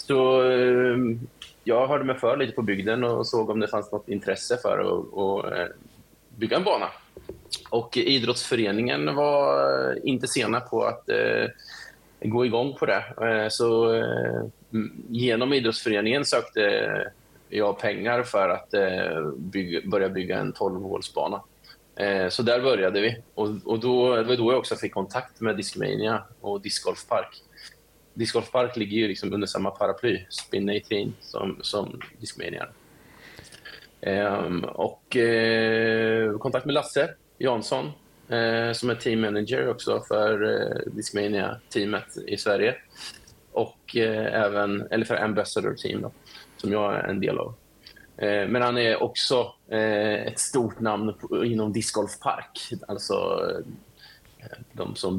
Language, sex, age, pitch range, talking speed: Swedish, male, 20-39, 105-125 Hz, 130 wpm